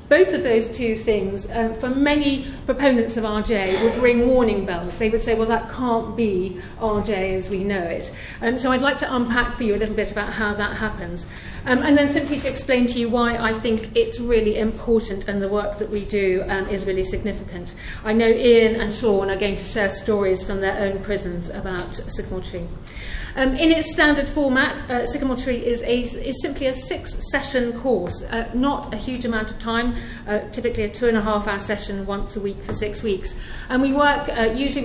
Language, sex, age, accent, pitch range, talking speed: English, female, 40-59, British, 205-245 Hz, 215 wpm